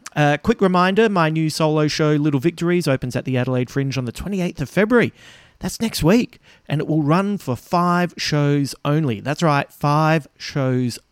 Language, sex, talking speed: English, male, 185 wpm